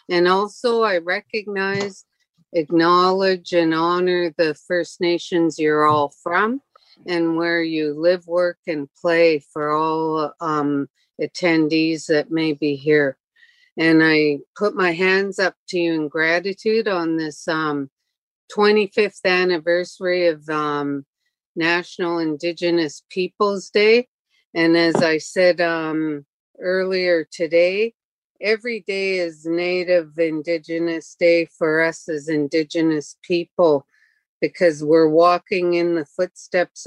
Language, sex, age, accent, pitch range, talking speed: English, female, 50-69, American, 160-185 Hz, 120 wpm